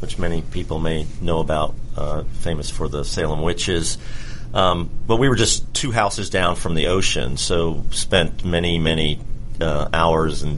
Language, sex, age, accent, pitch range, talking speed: English, male, 40-59, American, 75-90 Hz, 170 wpm